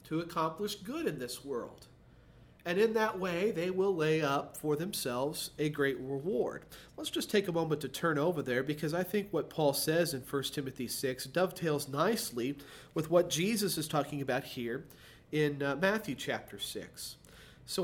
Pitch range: 150-210 Hz